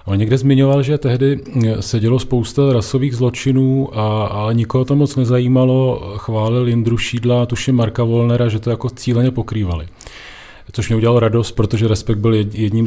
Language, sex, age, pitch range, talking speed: Czech, male, 40-59, 110-130 Hz, 165 wpm